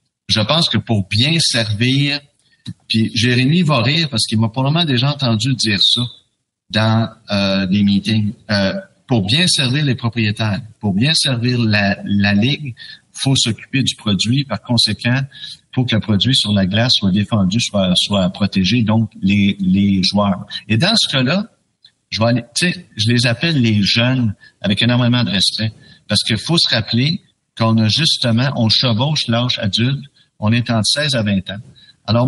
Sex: male